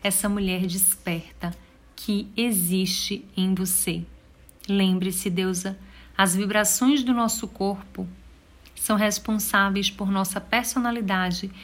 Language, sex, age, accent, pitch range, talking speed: Portuguese, female, 40-59, Brazilian, 180-205 Hz, 100 wpm